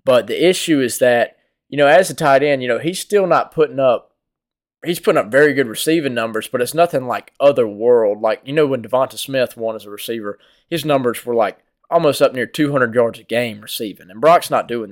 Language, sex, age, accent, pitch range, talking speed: English, male, 20-39, American, 115-140 Hz, 230 wpm